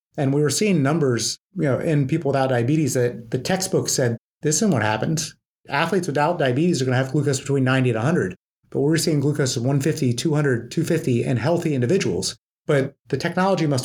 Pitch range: 125-155 Hz